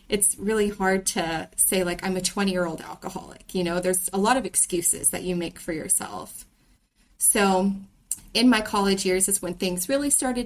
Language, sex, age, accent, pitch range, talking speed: English, female, 30-49, American, 180-205 Hz, 195 wpm